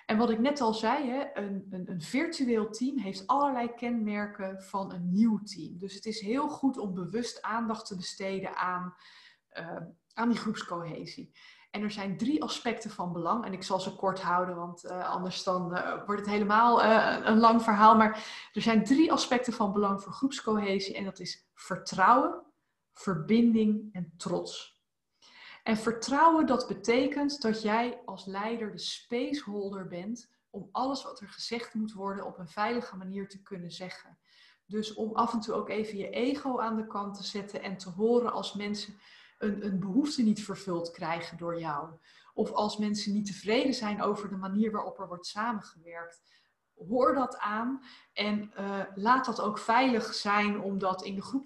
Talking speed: 175 wpm